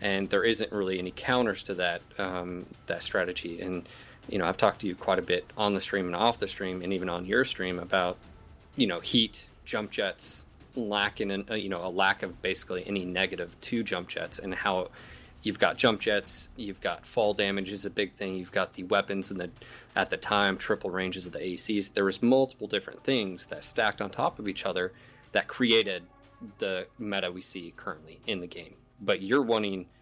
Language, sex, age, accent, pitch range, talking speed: English, male, 30-49, American, 95-115 Hz, 210 wpm